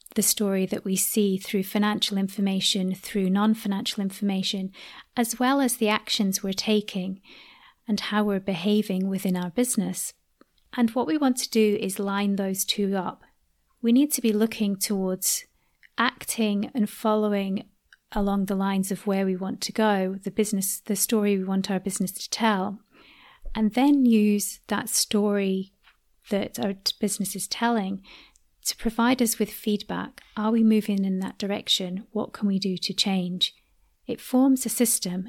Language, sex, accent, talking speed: English, female, British, 160 wpm